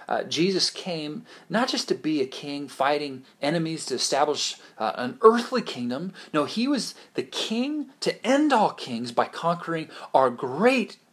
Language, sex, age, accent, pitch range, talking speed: English, male, 30-49, American, 150-235 Hz, 160 wpm